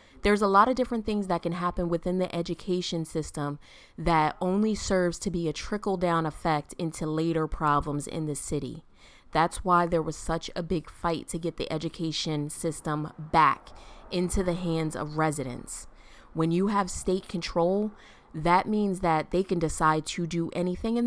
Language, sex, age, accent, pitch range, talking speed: English, female, 20-39, American, 155-185 Hz, 175 wpm